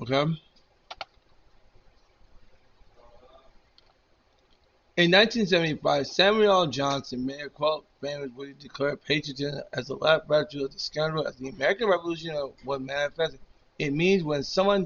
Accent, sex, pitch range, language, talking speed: American, male, 135-150 Hz, English, 115 wpm